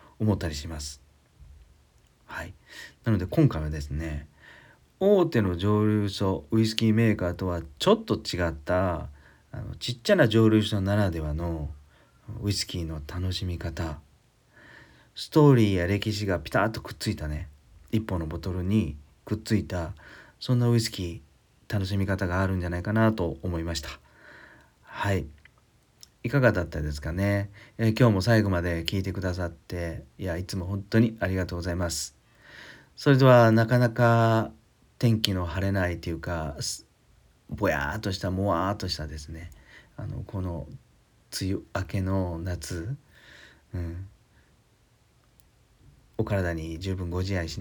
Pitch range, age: 80-105 Hz, 40-59